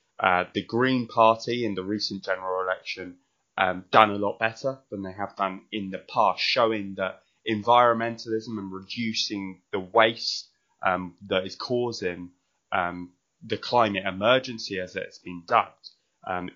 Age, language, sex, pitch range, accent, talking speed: 20-39, English, male, 95-120 Hz, British, 150 wpm